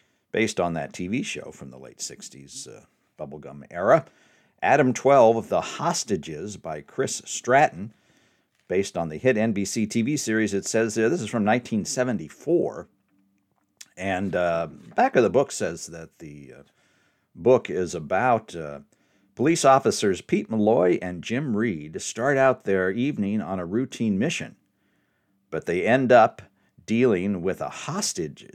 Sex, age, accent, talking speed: male, 50-69, American, 145 wpm